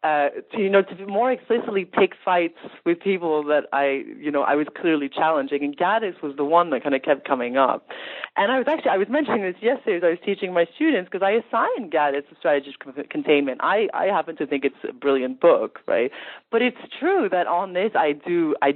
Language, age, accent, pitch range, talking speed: English, 30-49, American, 150-225 Hz, 230 wpm